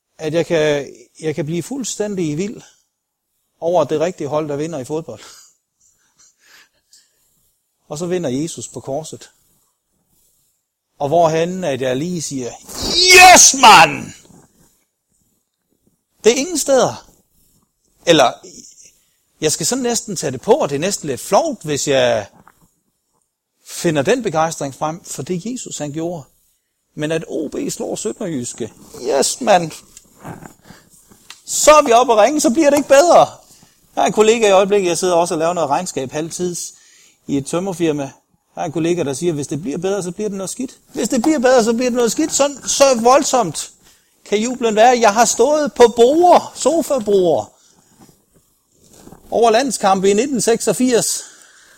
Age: 60-79